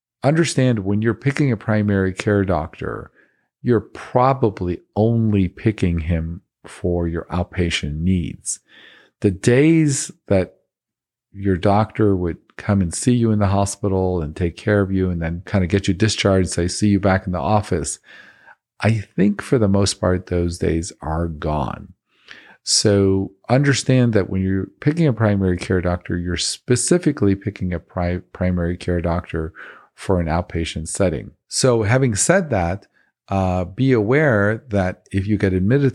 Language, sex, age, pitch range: English, male, 50-69, 85-110 Hz